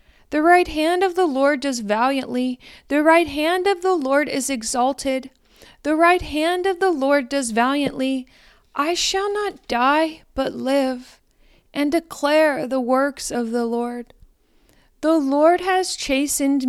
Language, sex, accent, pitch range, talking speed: English, female, American, 260-330 Hz, 145 wpm